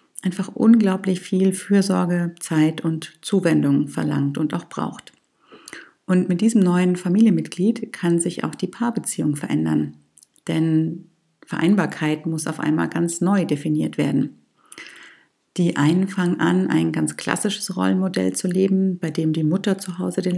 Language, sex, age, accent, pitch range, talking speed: German, female, 50-69, German, 160-195 Hz, 140 wpm